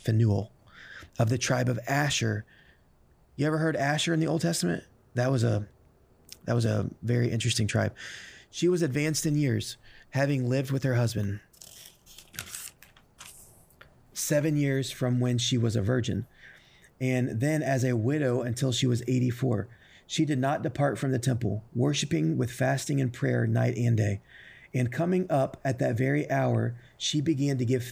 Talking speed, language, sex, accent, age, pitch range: 165 wpm, English, male, American, 30-49, 110-135 Hz